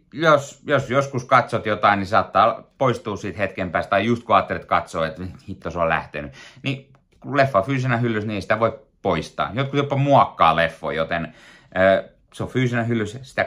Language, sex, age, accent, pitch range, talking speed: Finnish, male, 30-49, native, 90-120 Hz, 185 wpm